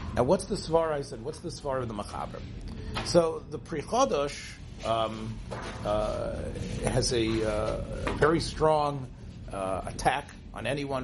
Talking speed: 140 wpm